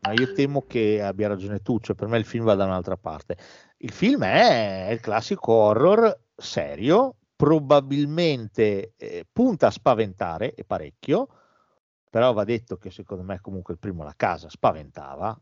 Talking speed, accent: 165 wpm, native